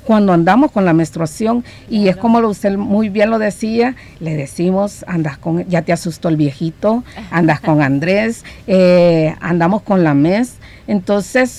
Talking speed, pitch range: 160 wpm, 180-240 Hz